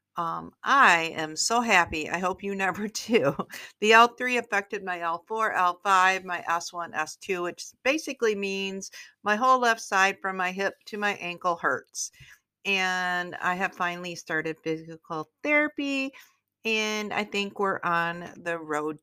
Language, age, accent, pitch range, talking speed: English, 50-69, American, 165-200 Hz, 150 wpm